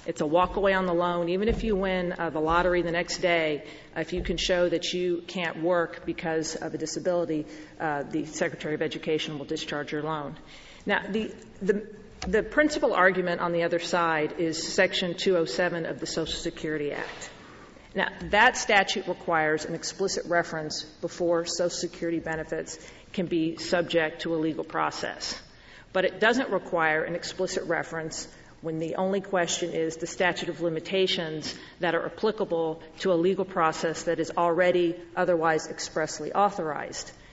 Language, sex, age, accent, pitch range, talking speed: English, female, 40-59, American, 160-185 Hz, 165 wpm